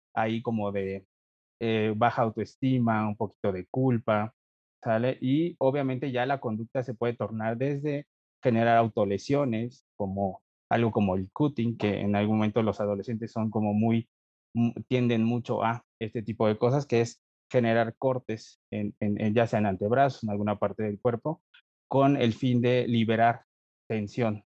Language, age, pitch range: Spanish, 30-49, 105-125 Hz